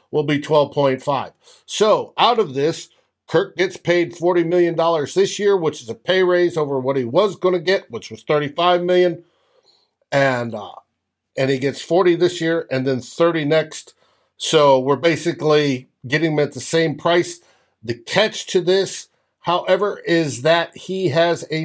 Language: English